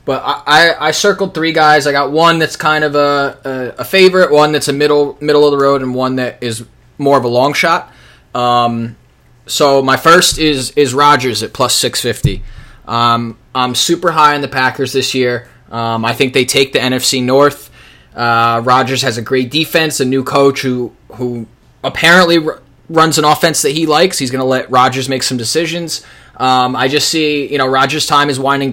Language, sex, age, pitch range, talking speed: English, male, 20-39, 120-145 Hz, 205 wpm